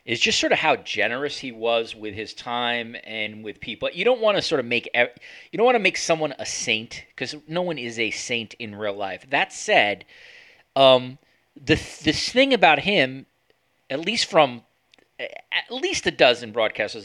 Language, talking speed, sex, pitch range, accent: English, 190 wpm, male, 125-185 Hz, American